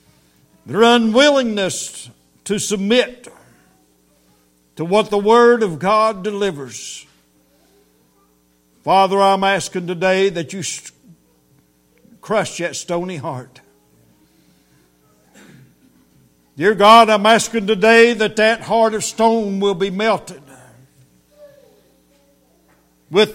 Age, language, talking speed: 60-79, English, 90 wpm